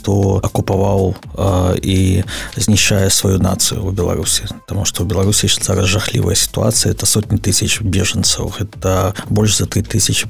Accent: native